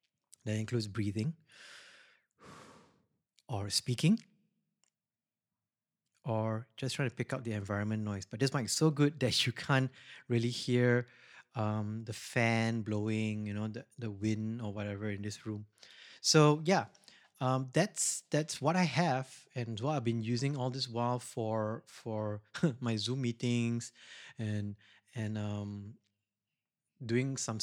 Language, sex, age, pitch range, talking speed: English, male, 30-49, 110-145 Hz, 140 wpm